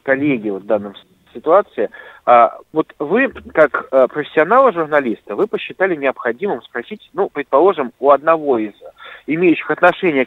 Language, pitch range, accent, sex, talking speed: Russian, 150-215 Hz, native, male, 110 wpm